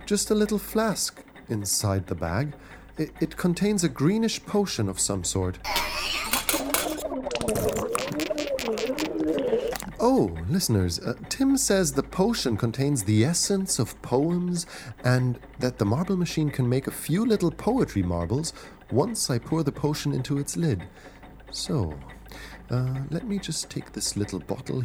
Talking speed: 140 wpm